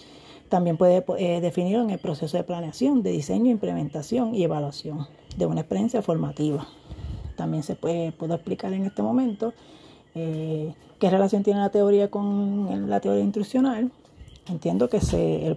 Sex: female